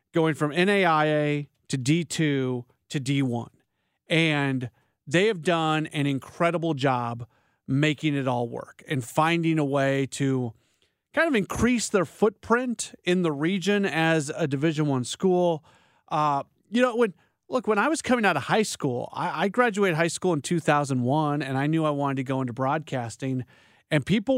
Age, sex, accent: 40-59, male, American